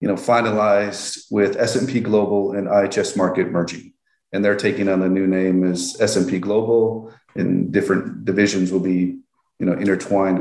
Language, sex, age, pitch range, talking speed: English, male, 40-59, 95-110 Hz, 160 wpm